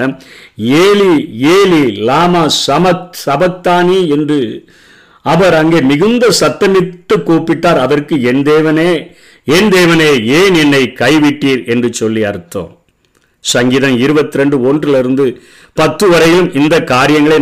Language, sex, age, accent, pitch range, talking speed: Tamil, male, 50-69, native, 140-170 Hz, 50 wpm